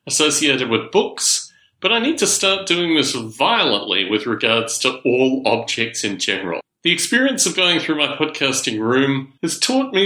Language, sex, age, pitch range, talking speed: English, male, 40-59, 120-180 Hz, 175 wpm